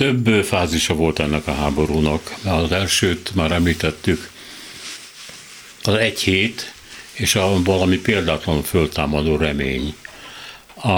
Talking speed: 110 wpm